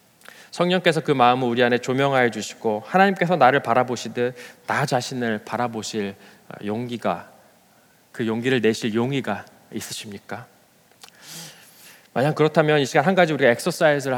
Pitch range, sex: 115-150 Hz, male